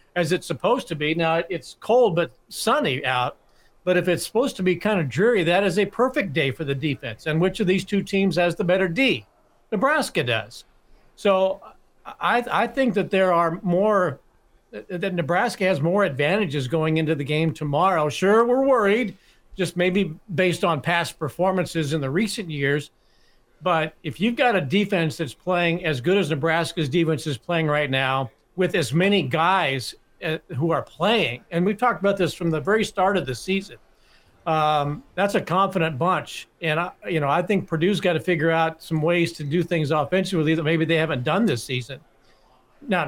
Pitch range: 155-190 Hz